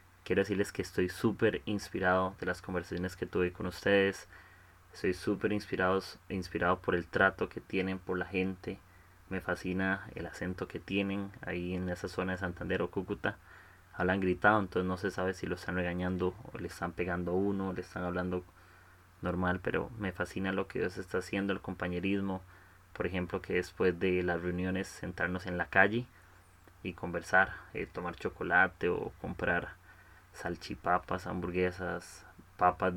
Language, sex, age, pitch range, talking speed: Spanish, male, 20-39, 90-95 Hz, 160 wpm